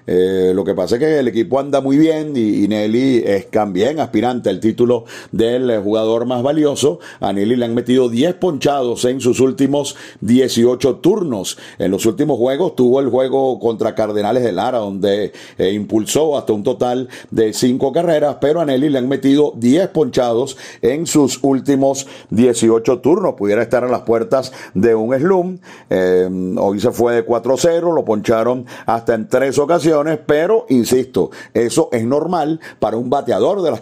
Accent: Venezuelan